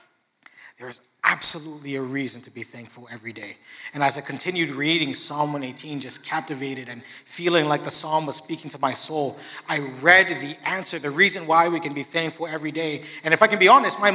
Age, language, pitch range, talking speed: 30-49, English, 160-240 Hz, 205 wpm